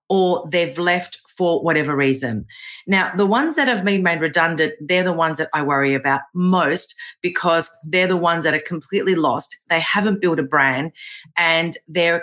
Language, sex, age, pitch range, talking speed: English, female, 40-59, 160-195 Hz, 180 wpm